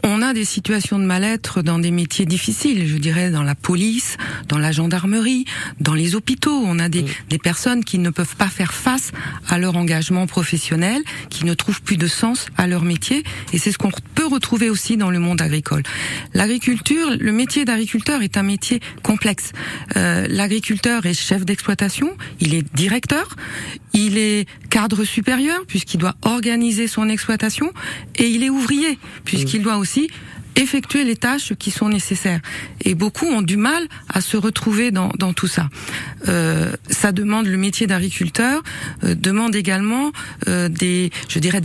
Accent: French